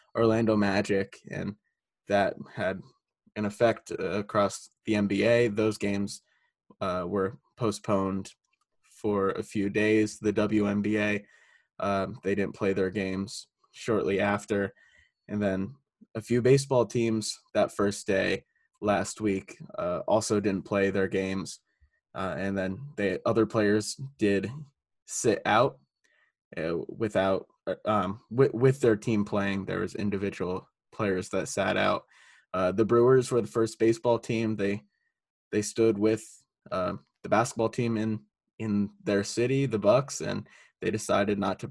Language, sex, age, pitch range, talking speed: English, male, 20-39, 100-115 Hz, 140 wpm